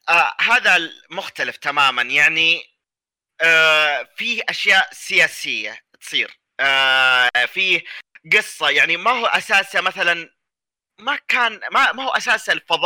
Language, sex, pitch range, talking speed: Arabic, male, 160-215 Hz, 115 wpm